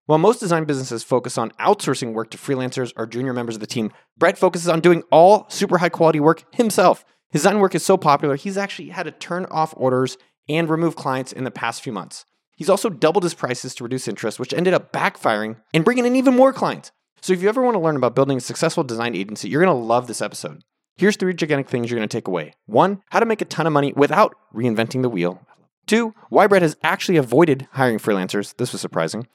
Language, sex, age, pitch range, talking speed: English, male, 30-49, 125-175 Hz, 235 wpm